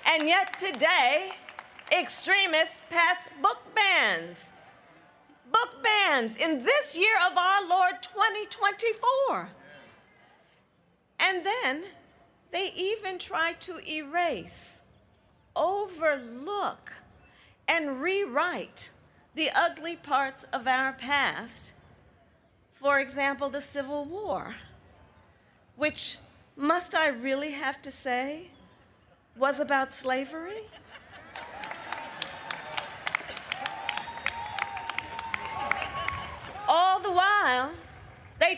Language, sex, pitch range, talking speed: English, female, 270-370 Hz, 80 wpm